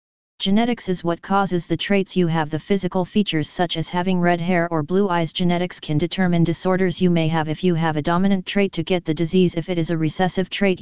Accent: American